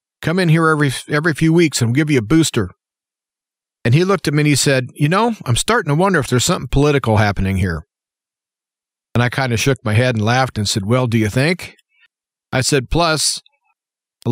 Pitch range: 120-160 Hz